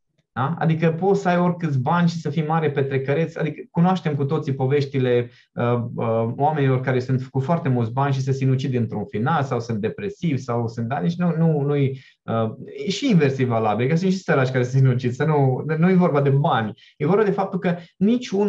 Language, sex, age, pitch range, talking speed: Romanian, male, 20-39, 130-175 Hz, 205 wpm